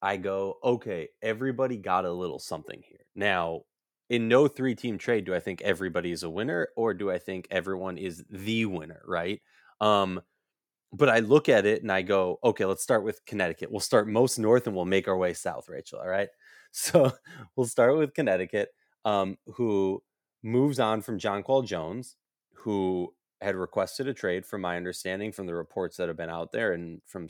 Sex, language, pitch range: male, English, 90-120 Hz